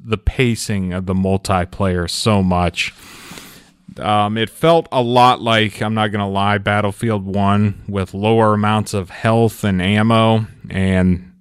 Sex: male